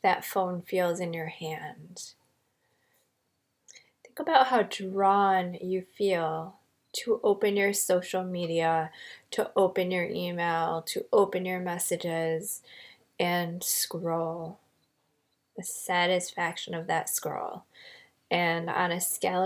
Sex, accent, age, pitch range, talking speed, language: female, American, 20-39, 175-200 Hz, 110 wpm, English